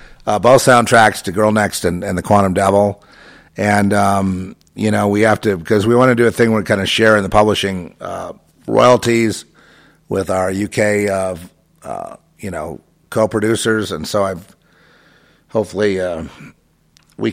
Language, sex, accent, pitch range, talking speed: English, male, American, 90-110 Hz, 170 wpm